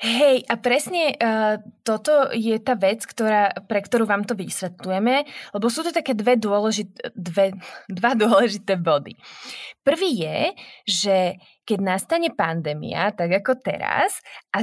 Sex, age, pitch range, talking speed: female, 20-39, 195-235 Hz, 140 wpm